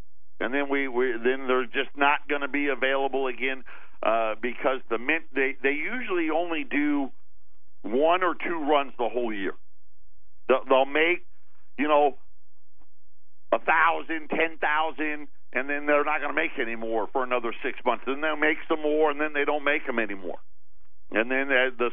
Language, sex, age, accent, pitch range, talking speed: English, male, 50-69, American, 120-145 Hz, 180 wpm